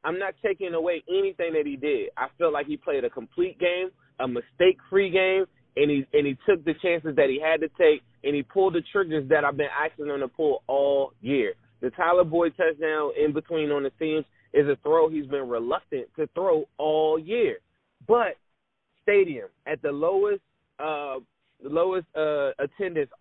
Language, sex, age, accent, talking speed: English, male, 20-39, American, 185 wpm